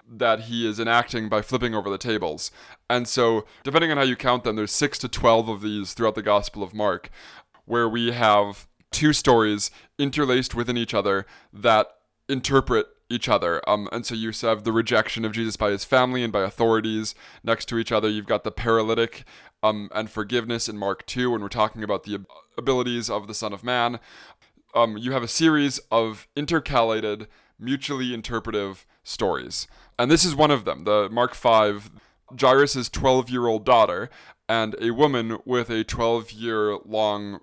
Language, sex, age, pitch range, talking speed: English, male, 20-39, 110-125 Hz, 175 wpm